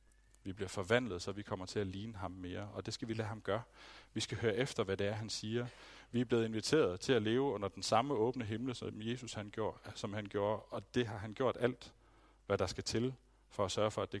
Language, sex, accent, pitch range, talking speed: Danish, male, native, 95-115 Hz, 260 wpm